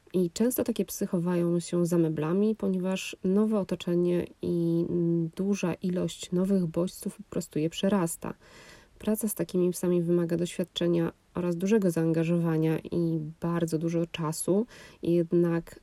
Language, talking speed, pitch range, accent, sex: Polish, 130 wpm, 165-195 Hz, native, female